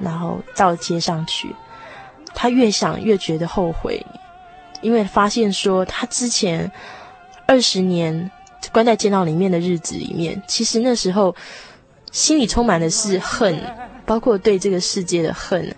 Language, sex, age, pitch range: Chinese, female, 20-39, 175-225 Hz